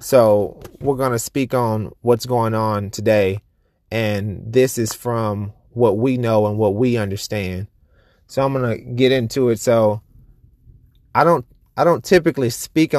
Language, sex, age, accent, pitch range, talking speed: English, male, 30-49, American, 105-125 Hz, 160 wpm